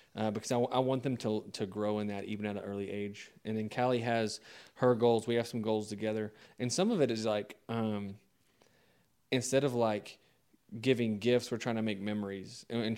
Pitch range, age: 110-125 Hz, 20-39